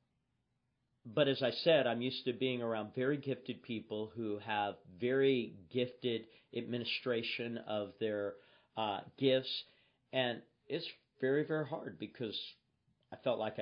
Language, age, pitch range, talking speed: English, 40-59, 115-130 Hz, 130 wpm